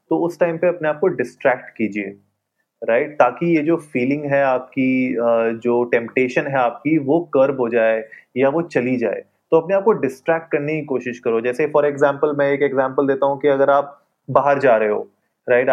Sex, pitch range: male, 130-160 Hz